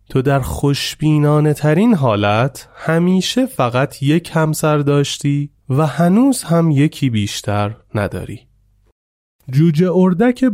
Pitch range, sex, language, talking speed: 110-165 Hz, male, Persian, 100 wpm